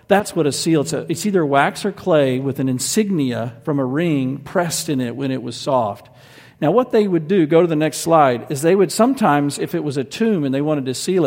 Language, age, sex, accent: English, 50-69, male, American